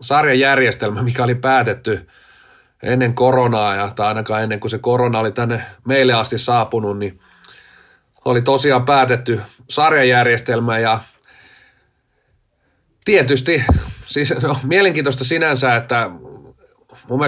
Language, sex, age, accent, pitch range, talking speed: Finnish, male, 40-59, native, 110-135 Hz, 110 wpm